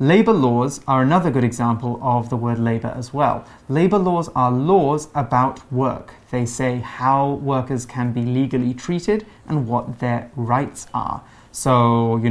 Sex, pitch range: male, 120-135 Hz